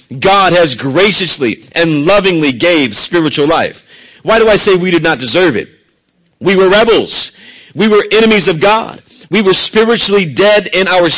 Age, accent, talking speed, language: 50-69, American, 165 wpm, English